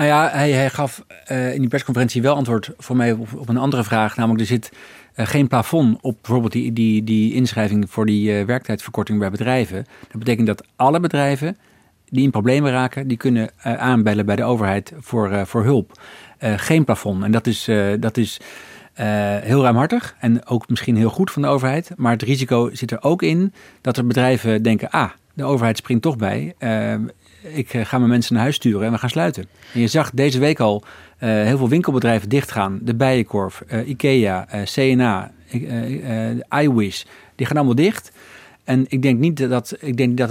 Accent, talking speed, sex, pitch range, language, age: Dutch, 205 wpm, male, 110-135 Hz, Dutch, 50-69